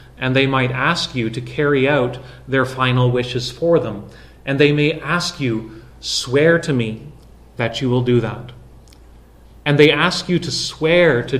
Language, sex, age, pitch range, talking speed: English, male, 30-49, 120-145 Hz, 175 wpm